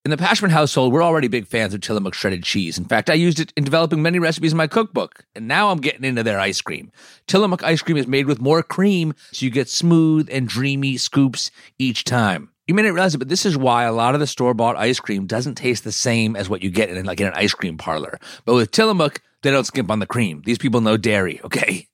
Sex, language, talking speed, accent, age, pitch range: male, English, 255 wpm, American, 30-49, 115-150 Hz